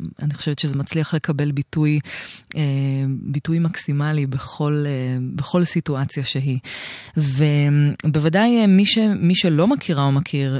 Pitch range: 140-165 Hz